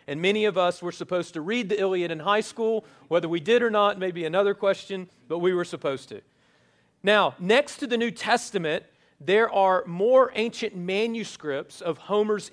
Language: English